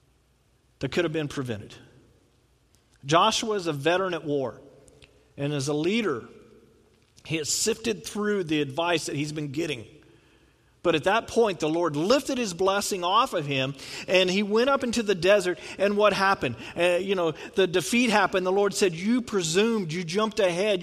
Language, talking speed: English, 175 wpm